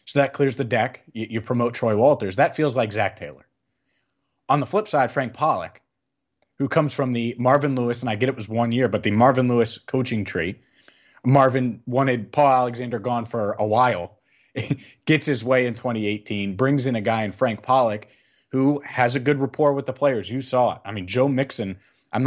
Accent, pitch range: American, 110-135 Hz